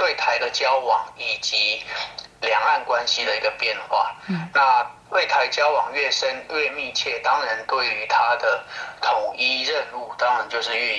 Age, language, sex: 30-49, Chinese, male